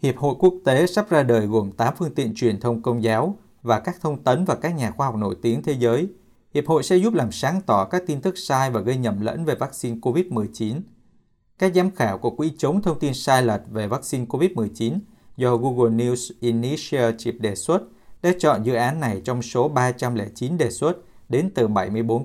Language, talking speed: Vietnamese, 210 wpm